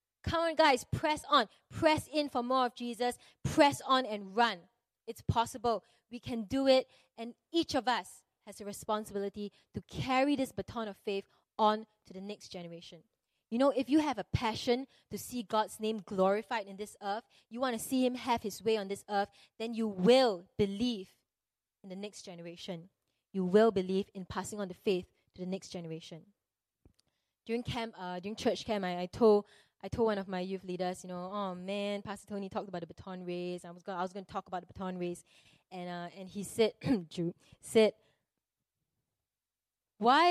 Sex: female